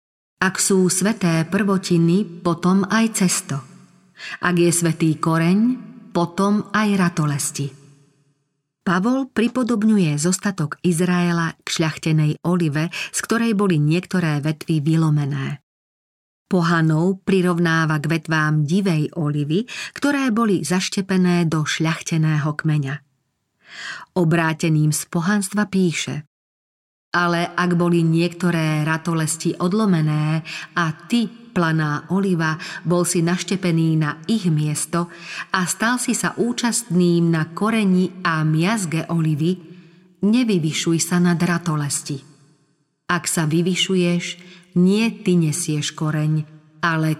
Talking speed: 105 wpm